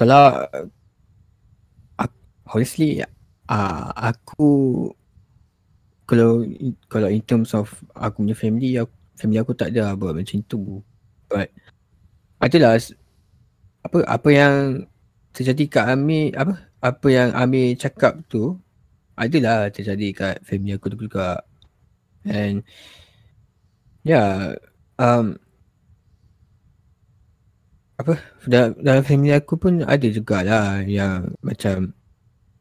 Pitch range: 100-120 Hz